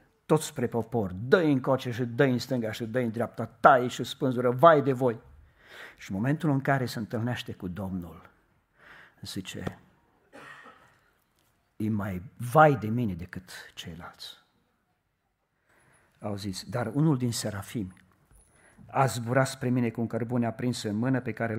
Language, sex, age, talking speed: Romanian, male, 50-69, 150 wpm